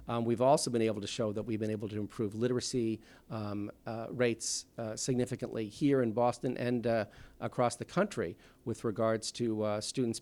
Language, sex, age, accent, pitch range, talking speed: English, male, 50-69, American, 110-130 Hz, 190 wpm